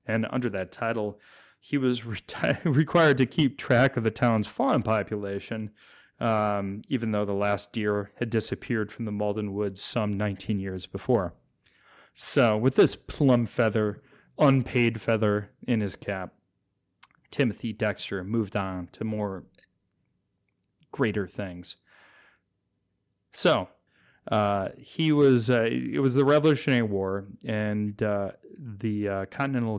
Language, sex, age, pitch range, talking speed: English, male, 30-49, 100-120 Hz, 130 wpm